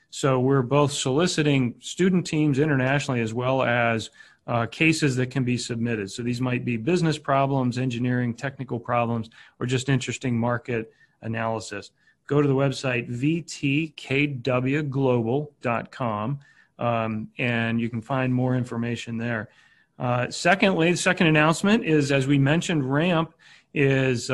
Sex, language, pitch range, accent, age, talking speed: male, English, 120-150 Hz, American, 40-59, 135 wpm